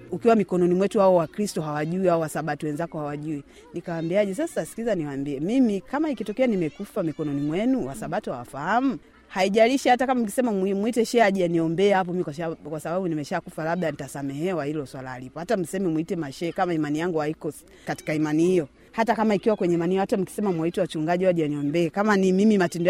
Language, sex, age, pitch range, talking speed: Swahili, female, 30-49, 170-245 Hz, 175 wpm